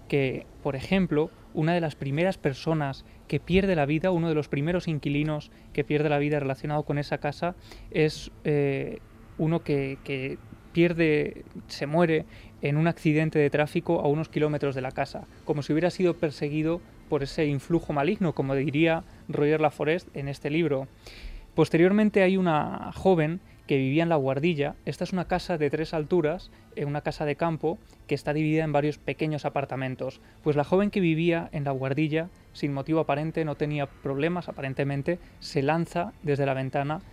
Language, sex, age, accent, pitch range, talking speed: Spanish, male, 20-39, Spanish, 140-165 Hz, 175 wpm